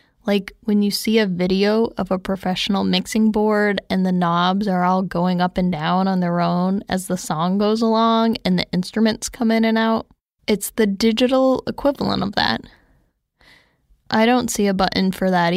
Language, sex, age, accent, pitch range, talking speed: English, female, 10-29, American, 185-225 Hz, 185 wpm